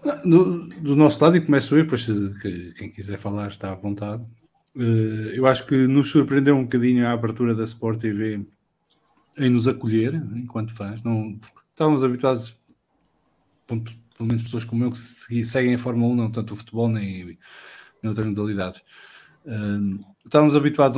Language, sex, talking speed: English, male, 165 wpm